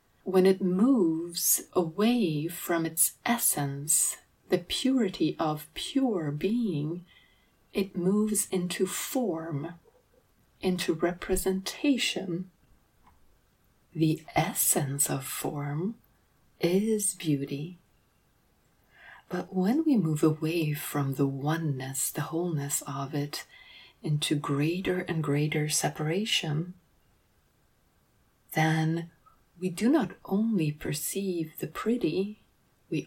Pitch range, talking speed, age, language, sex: 150-185 Hz, 90 wpm, 30-49, English, female